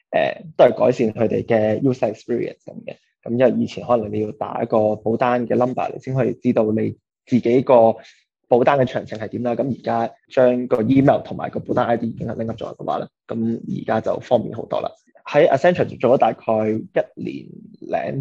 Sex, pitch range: male, 115-130 Hz